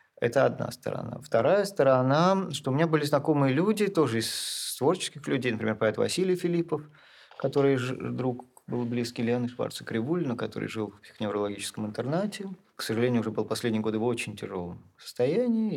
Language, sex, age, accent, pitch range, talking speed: Russian, male, 40-59, native, 115-155 Hz, 155 wpm